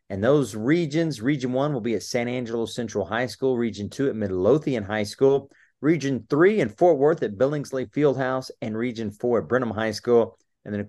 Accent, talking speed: American, 205 wpm